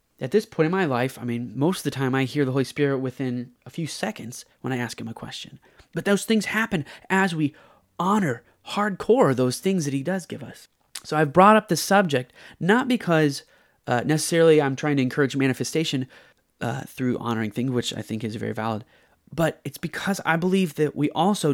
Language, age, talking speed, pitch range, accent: English, 30-49, 210 wpm, 125-160 Hz, American